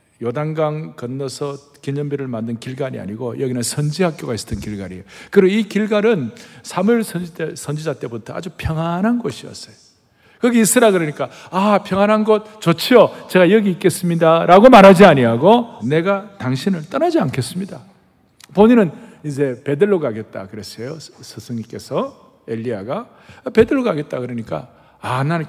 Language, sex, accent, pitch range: Korean, male, native, 125-200 Hz